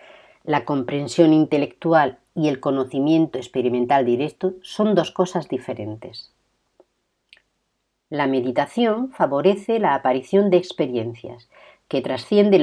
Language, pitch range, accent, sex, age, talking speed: Spanish, 125-190 Hz, Spanish, female, 50-69, 100 wpm